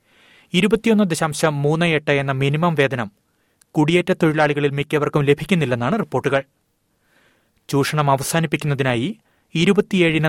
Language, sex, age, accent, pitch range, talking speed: Malayalam, male, 30-49, native, 135-160 Hz, 75 wpm